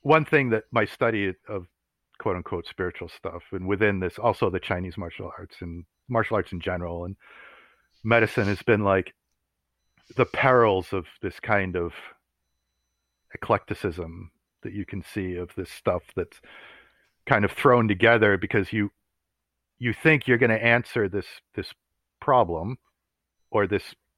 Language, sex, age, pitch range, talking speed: English, male, 50-69, 90-115 Hz, 150 wpm